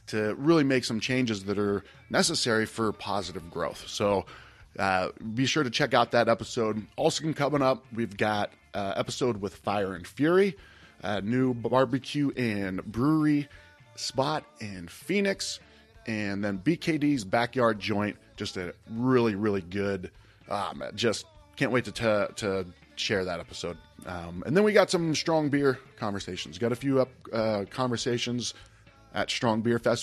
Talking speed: 155 wpm